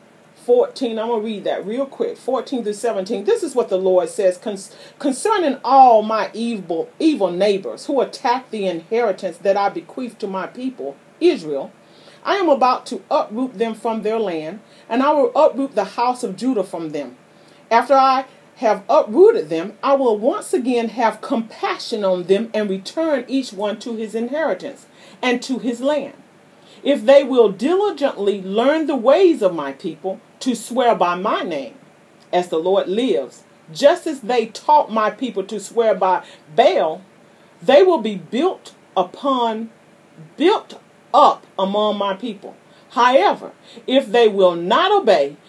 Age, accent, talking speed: 40-59, American, 160 wpm